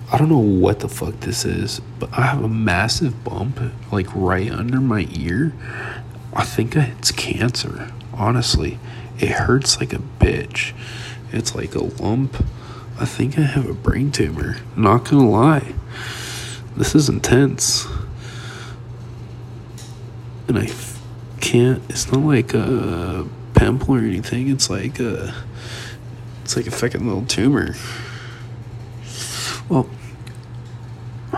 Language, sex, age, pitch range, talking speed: English, male, 40-59, 115-125 Hz, 125 wpm